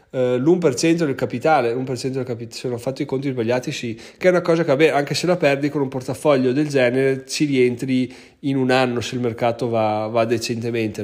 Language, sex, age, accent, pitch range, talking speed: Italian, male, 30-49, native, 125-155 Hz, 225 wpm